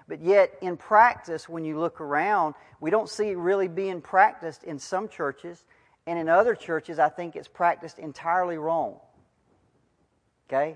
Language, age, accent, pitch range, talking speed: English, 40-59, American, 140-185 Hz, 160 wpm